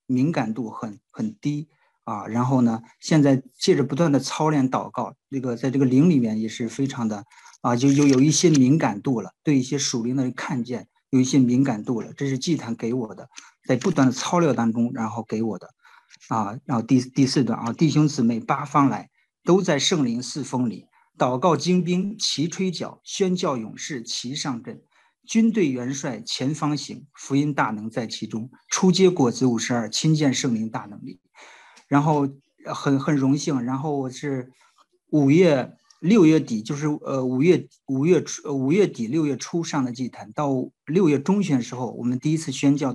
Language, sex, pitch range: Chinese, male, 120-150 Hz